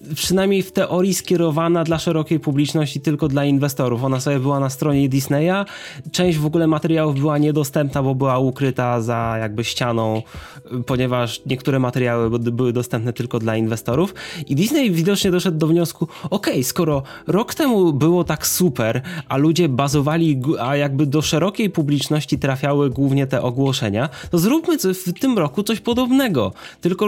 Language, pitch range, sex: Polish, 130-185 Hz, male